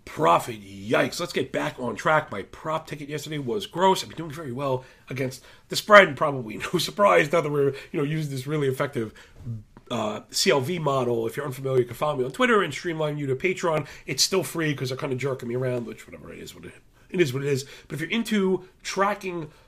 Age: 40-59